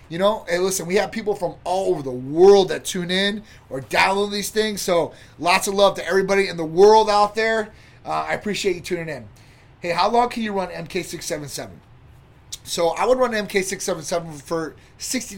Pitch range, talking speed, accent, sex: 135-200 Hz, 195 wpm, American, male